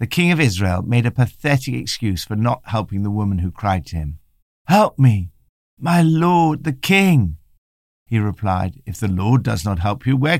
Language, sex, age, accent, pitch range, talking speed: English, male, 60-79, British, 90-150 Hz, 190 wpm